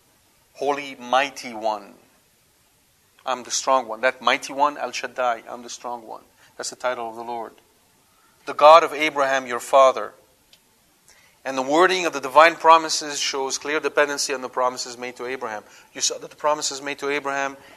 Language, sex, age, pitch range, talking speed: English, male, 40-59, 125-145 Hz, 170 wpm